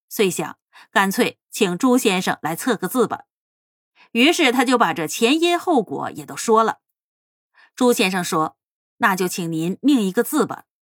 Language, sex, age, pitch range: Chinese, female, 30-49, 185-285 Hz